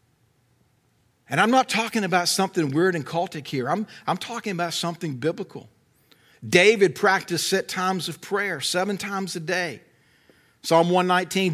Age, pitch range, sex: 50-69, 185-255 Hz, male